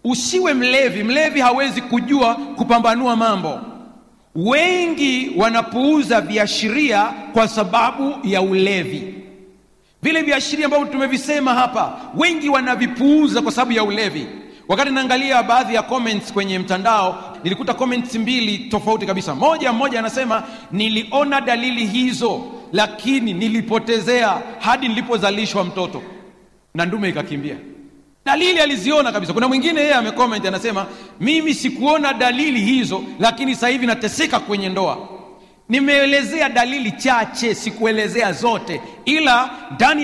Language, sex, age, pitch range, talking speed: Swahili, male, 40-59, 205-270 Hz, 115 wpm